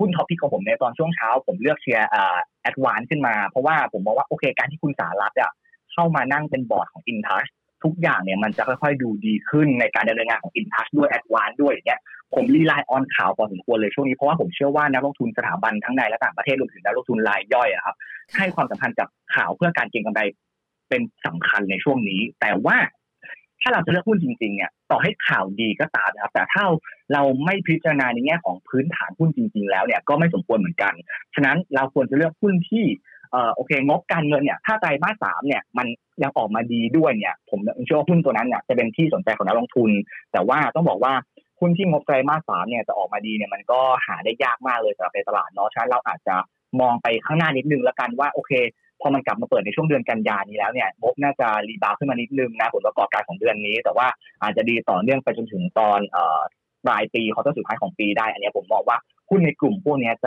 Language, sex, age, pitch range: Thai, male, 20-39, 115-175 Hz